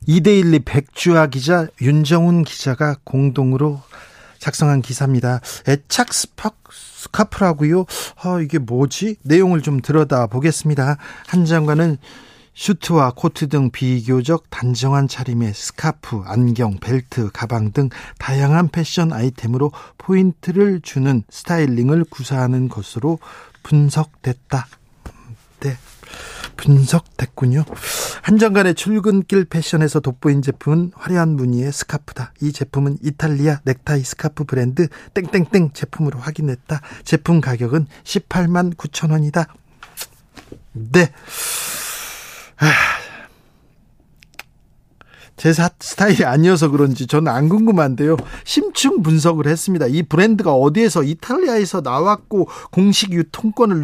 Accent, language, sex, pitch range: native, Korean, male, 135-175 Hz